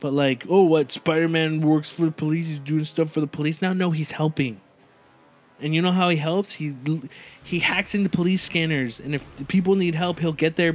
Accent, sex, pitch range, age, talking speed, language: American, male, 135-175 Hz, 20-39, 230 wpm, English